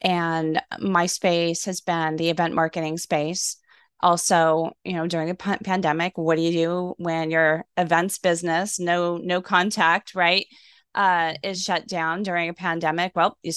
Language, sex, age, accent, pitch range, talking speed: English, female, 20-39, American, 165-195 Hz, 165 wpm